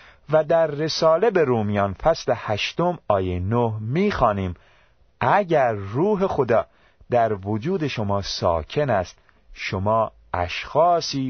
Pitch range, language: 95-150 Hz, Persian